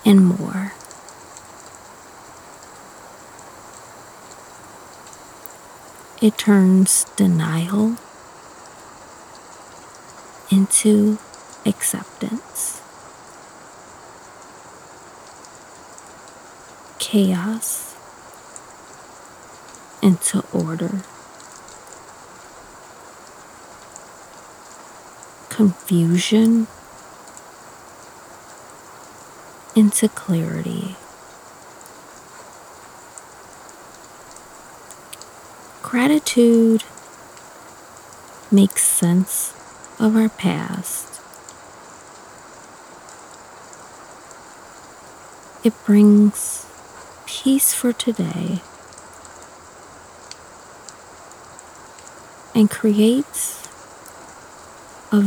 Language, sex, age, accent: English, female, 40-59, American